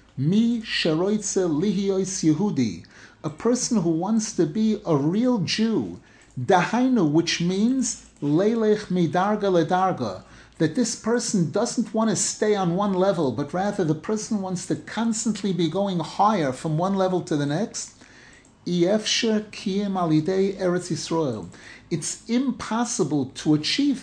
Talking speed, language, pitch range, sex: 105 wpm, English, 155-215 Hz, male